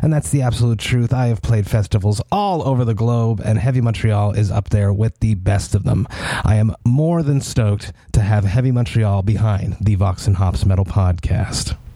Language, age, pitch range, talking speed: English, 30-49, 100-125 Hz, 195 wpm